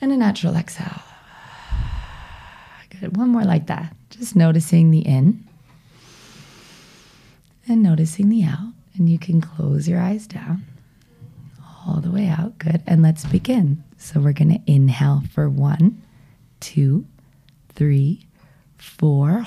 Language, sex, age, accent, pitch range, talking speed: English, female, 30-49, American, 140-170 Hz, 125 wpm